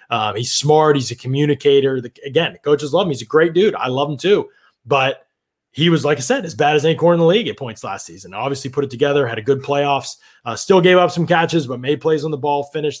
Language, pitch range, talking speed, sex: English, 125-150 Hz, 270 wpm, male